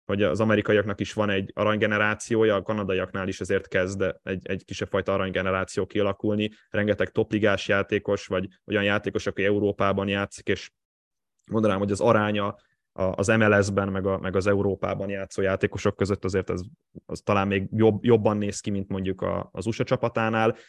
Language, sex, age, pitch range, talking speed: Hungarian, male, 20-39, 100-110 Hz, 165 wpm